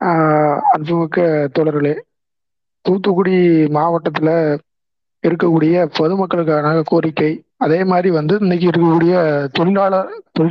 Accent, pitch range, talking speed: native, 155-185 Hz, 80 wpm